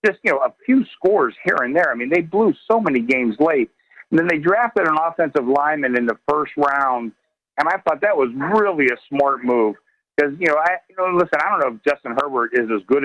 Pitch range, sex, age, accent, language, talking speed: 125-165 Hz, male, 50-69, American, English, 245 wpm